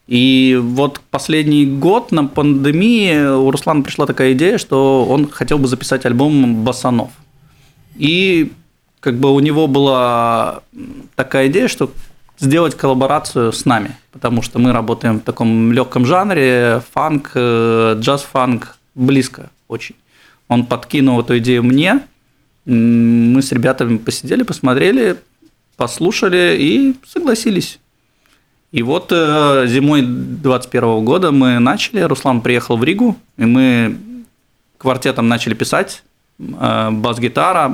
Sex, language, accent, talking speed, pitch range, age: male, Russian, native, 115 wpm, 120-155 Hz, 20-39